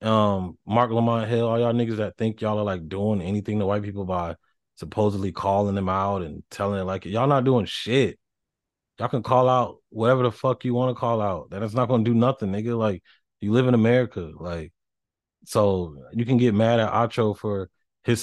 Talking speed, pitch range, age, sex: 210 wpm, 95-120 Hz, 20-39, male